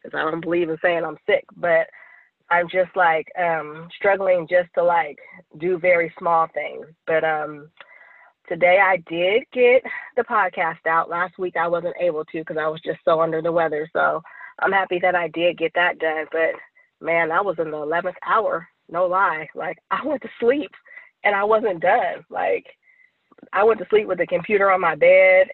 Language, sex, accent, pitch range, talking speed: English, female, American, 170-245 Hz, 195 wpm